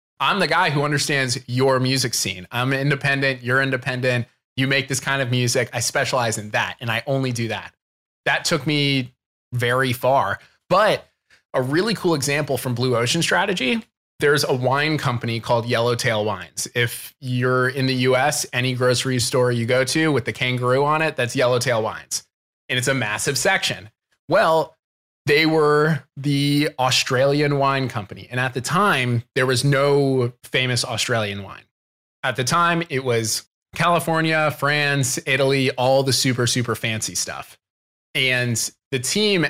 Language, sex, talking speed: English, male, 160 wpm